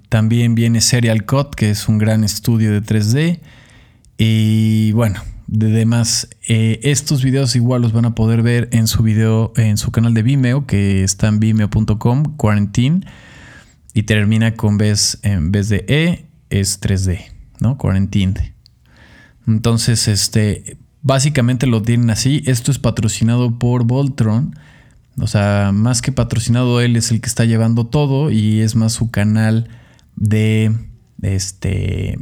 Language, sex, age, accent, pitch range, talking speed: Spanish, male, 20-39, Mexican, 110-125 Hz, 145 wpm